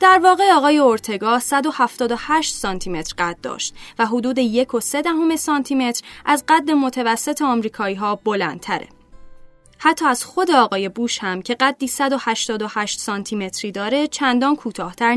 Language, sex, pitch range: Persian, female, 210-285 Hz